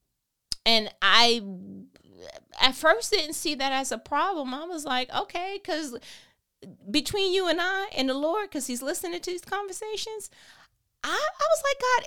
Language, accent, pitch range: English, American, 205-315 Hz